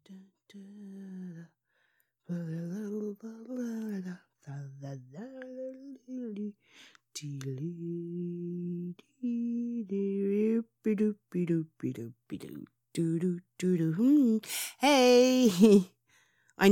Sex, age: female, 30-49